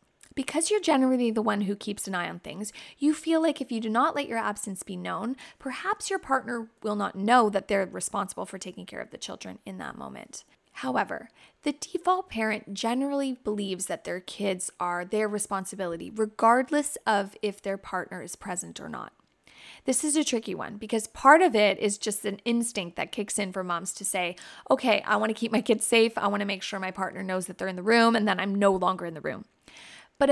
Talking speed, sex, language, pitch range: 220 wpm, female, English, 200-255 Hz